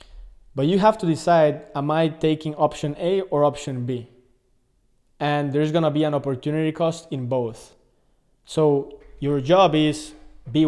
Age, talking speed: 20-39, 155 wpm